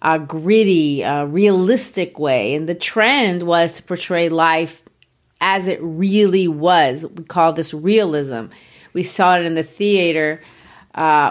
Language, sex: English, female